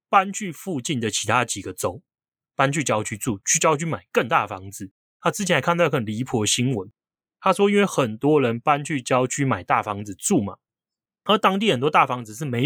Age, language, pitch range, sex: 30-49, Chinese, 110-155 Hz, male